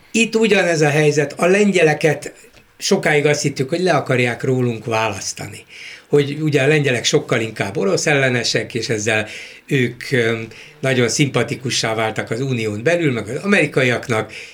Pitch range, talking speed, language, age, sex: 115-150 Hz, 140 wpm, Hungarian, 60-79, male